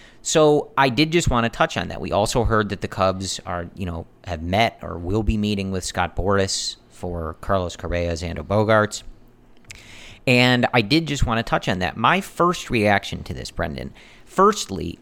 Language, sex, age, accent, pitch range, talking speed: English, male, 40-59, American, 90-120 Hz, 190 wpm